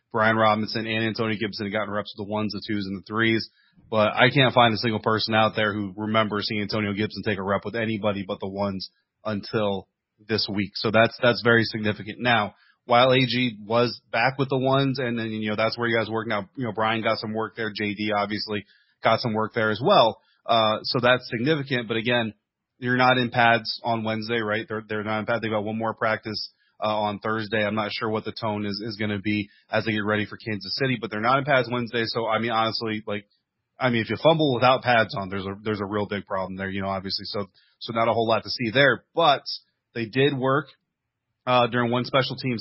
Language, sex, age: English, male, 30-49